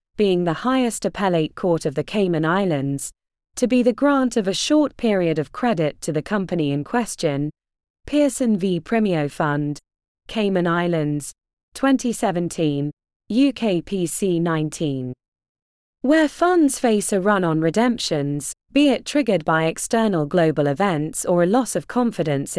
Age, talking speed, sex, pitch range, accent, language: 20-39, 135 wpm, female, 155-230 Hz, British, English